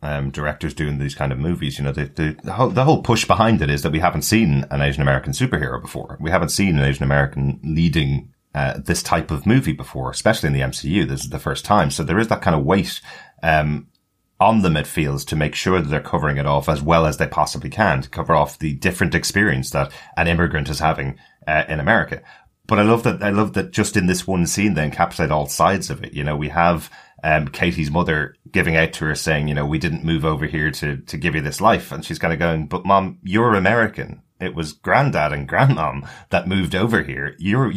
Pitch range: 70-90 Hz